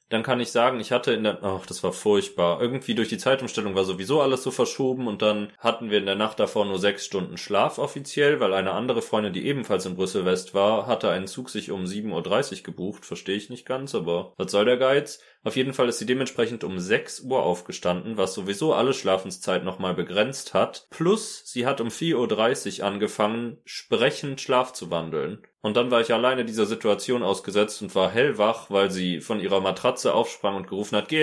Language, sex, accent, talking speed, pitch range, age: German, male, German, 210 wpm, 100-130 Hz, 30-49